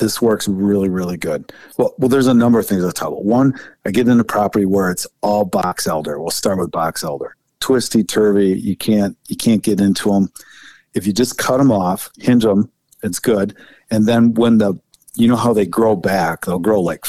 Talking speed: 220 wpm